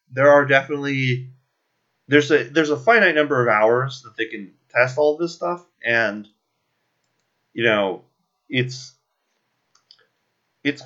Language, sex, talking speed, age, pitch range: English, male, 135 wpm, 30-49, 110-145 Hz